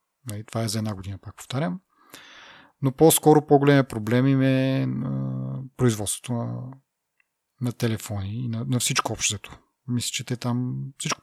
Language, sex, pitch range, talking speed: Bulgarian, male, 110-140 Hz, 150 wpm